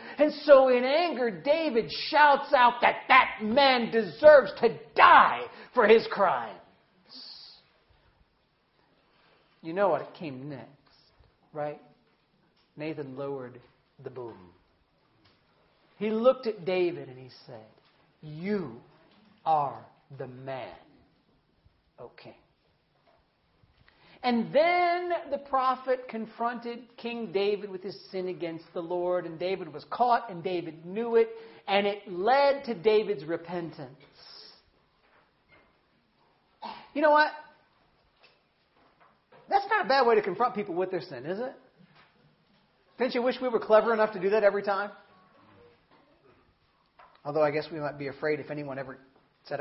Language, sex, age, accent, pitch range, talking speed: English, male, 50-69, American, 150-250 Hz, 130 wpm